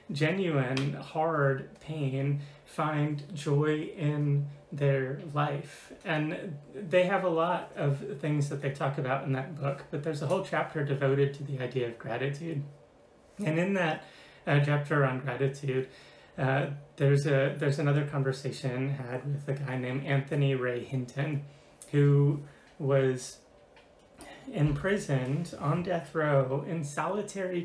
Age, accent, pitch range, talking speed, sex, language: 30-49, American, 135-155 Hz, 135 wpm, male, English